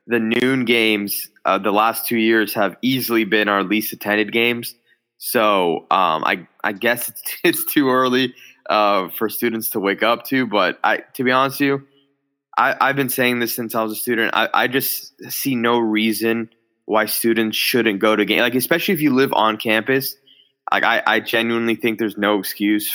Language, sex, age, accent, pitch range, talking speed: English, male, 20-39, American, 105-120 Hz, 195 wpm